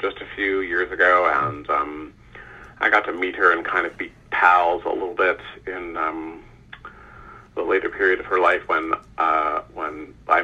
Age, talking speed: 40-59, 185 wpm